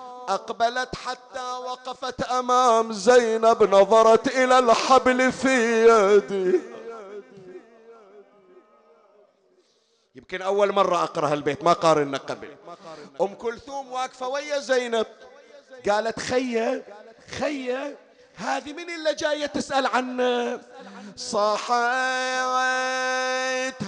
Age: 50-69